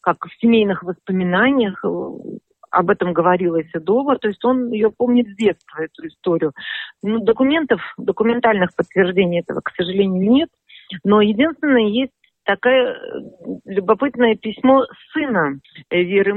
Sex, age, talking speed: female, 40-59, 115 wpm